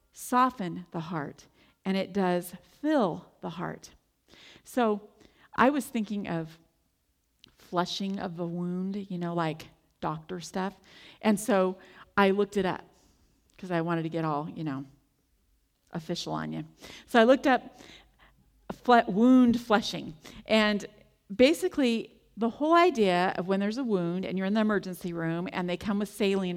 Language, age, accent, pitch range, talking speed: English, 40-59, American, 175-225 Hz, 150 wpm